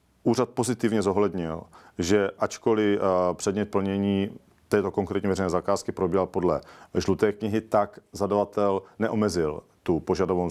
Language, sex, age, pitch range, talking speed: Czech, male, 40-59, 85-100 Hz, 115 wpm